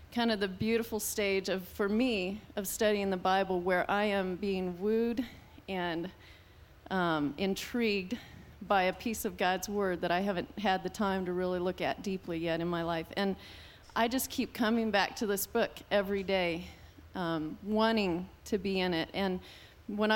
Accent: American